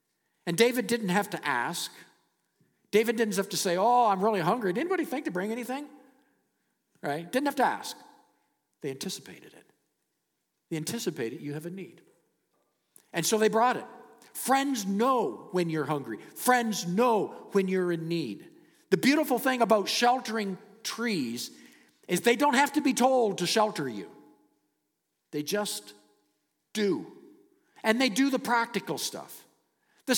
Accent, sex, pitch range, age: American, male, 170-255 Hz, 50-69